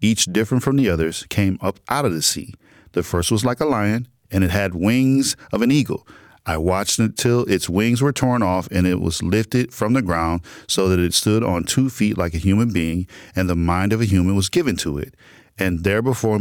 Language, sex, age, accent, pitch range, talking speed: English, male, 40-59, American, 90-115 Hz, 230 wpm